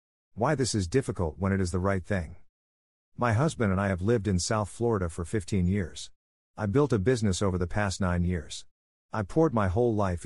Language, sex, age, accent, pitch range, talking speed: English, male, 50-69, American, 85-115 Hz, 210 wpm